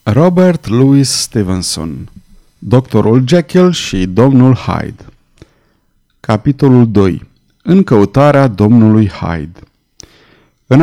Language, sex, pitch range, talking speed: Romanian, male, 110-145 Hz, 85 wpm